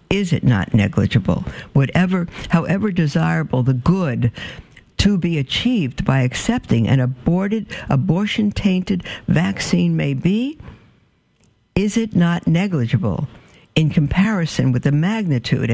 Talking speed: 110 wpm